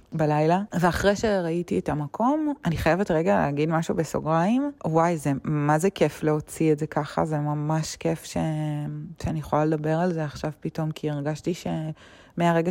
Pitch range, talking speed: 150-190 Hz, 160 wpm